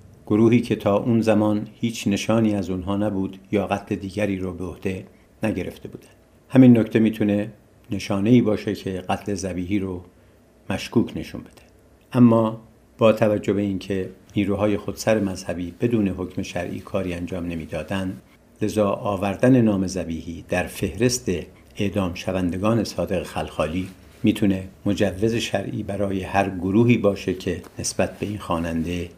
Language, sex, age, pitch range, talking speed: Persian, male, 60-79, 95-110 Hz, 135 wpm